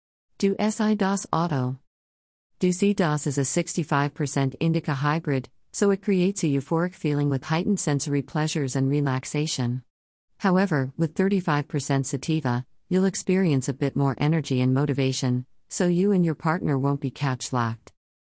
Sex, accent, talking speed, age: female, American, 140 wpm, 50-69